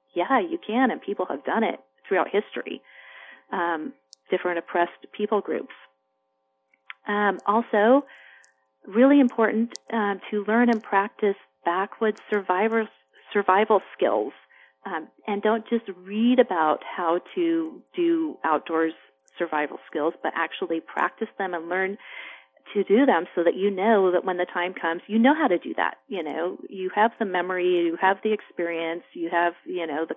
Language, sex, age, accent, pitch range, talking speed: English, female, 40-59, American, 175-220 Hz, 155 wpm